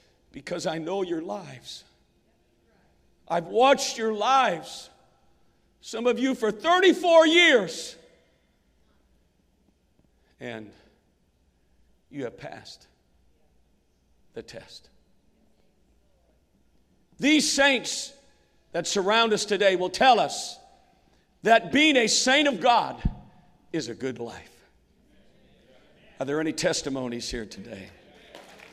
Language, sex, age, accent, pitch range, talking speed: English, male, 50-69, American, 215-290 Hz, 95 wpm